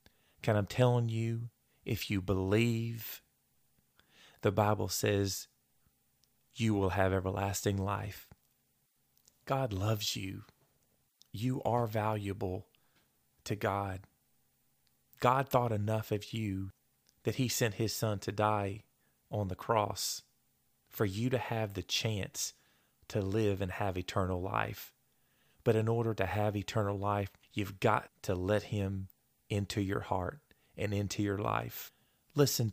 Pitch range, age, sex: 95-115 Hz, 30-49, male